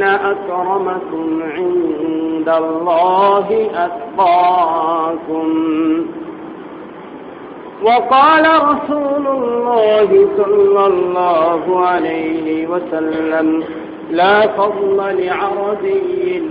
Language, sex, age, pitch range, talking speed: Bengali, male, 50-69, 165-245 Hz, 50 wpm